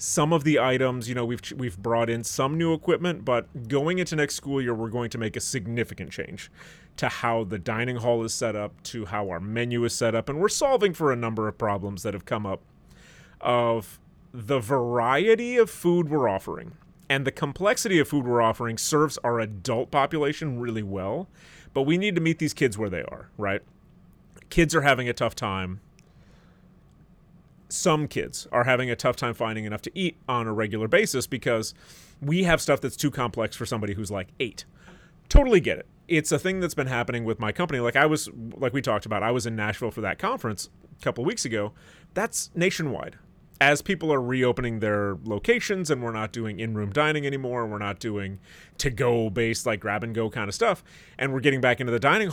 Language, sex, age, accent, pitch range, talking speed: English, male, 30-49, American, 115-150 Hz, 210 wpm